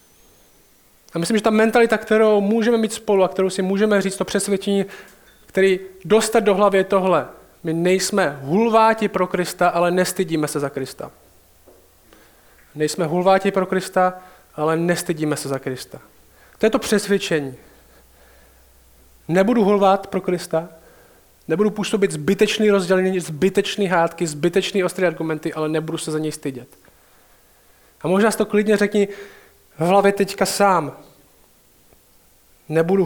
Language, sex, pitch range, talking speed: Czech, male, 165-205 Hz, 135 wpm